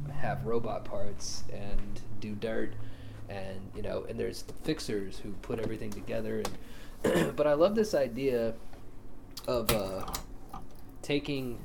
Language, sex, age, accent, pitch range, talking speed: English, male, 20-39, American, 105-125 Hz, 135 wpm